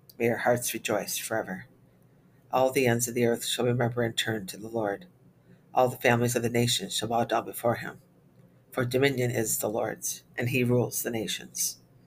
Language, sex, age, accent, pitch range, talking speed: English, female, 50-69, American, 110-125 Hz, 195 wpm